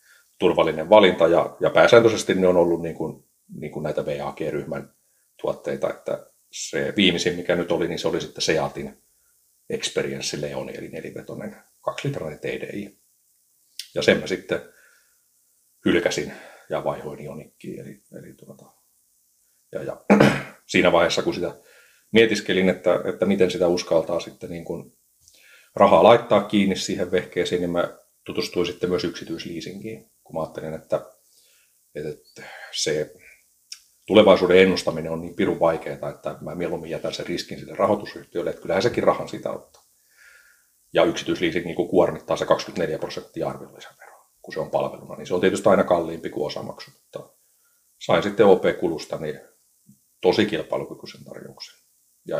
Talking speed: 145 wpm